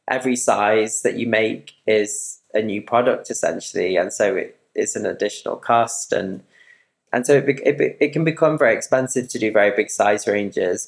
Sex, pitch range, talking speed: male, 100-125 Hz, 175 wpm